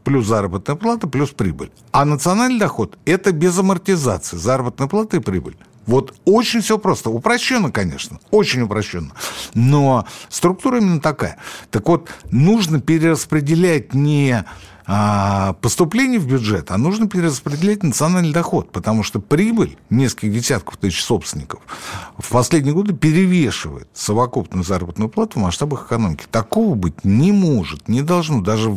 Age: 60-79